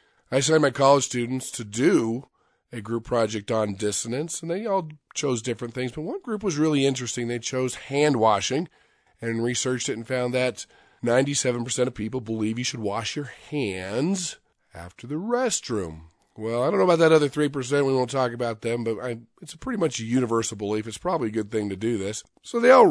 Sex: male